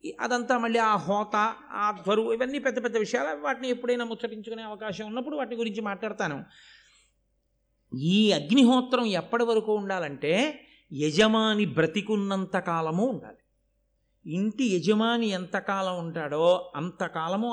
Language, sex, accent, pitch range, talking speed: Telugu, male, native, 185-265 Hz, 105 wpm